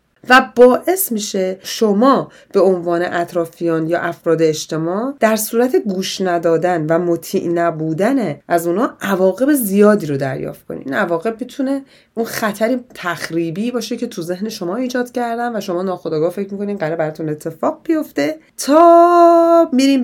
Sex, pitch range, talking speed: female, 165-230 Hz, 140 wpm